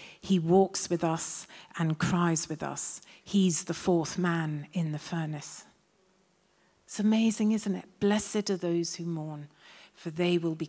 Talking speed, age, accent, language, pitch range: 155 wpm, 40-59, British, English, 165-195 Hz